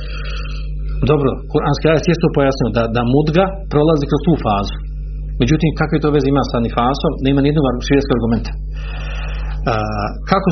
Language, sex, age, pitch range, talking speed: Croatian, male, 50-69, 120-165 Hz, 155 wpm